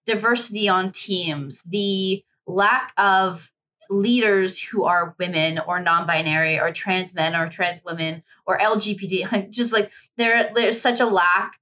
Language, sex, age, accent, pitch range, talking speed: English, female, 20-39, American, 170-200 Hz, 135 wpm